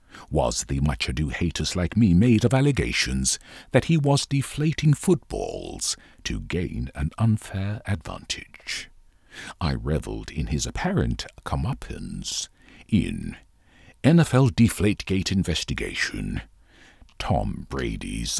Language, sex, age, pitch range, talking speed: English, male, 60-79, 85-135 Hz, 105 wpm